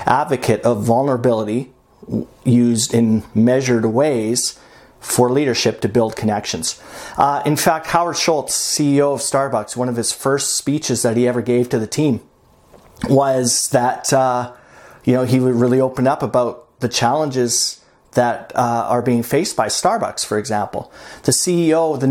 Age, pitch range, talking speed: 40-59, 115-140 Hz, 155 wpm